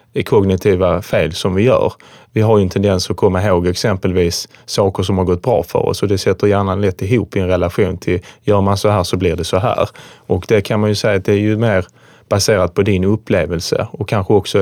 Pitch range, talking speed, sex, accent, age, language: 95-110 Hz, 240 wpm, male, Norwegian, 30-49, Swedish